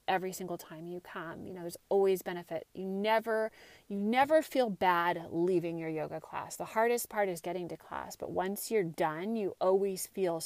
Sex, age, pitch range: female, 30-49, 170-205 Hz